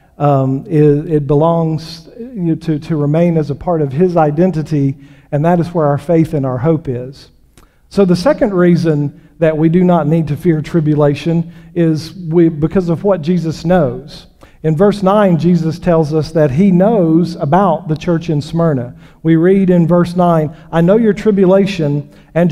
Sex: male